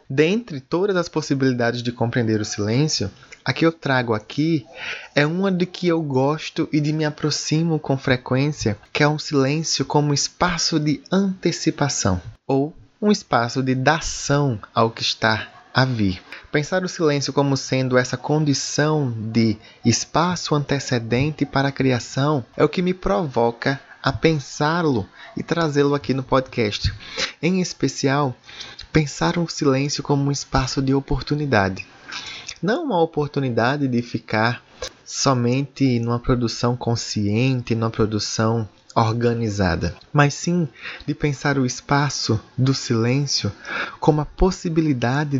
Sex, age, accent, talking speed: male, 20-39, Brazilian, 135 wpm